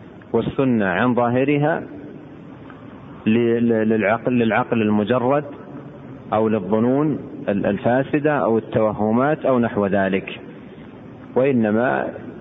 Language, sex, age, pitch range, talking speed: Arabic, male, 40-59, 110-130 Hz, 75 wpm